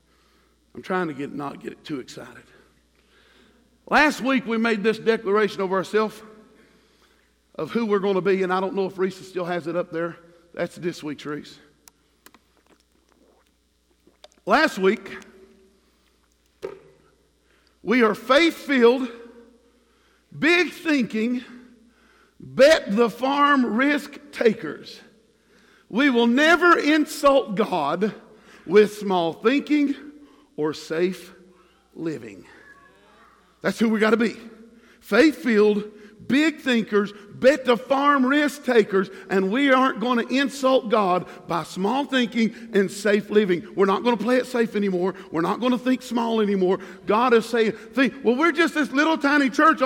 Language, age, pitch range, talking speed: English, 50-69, 190-255 Hz, 135 wpm